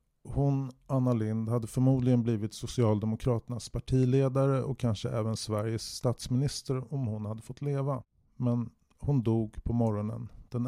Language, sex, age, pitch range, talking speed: English, male, 30-49, 105-125 Hz, 135 wpm